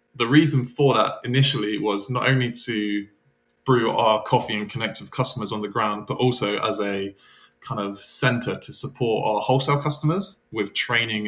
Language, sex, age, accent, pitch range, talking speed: English, male, 20-39, British, 105-135 Hz, 175 wpm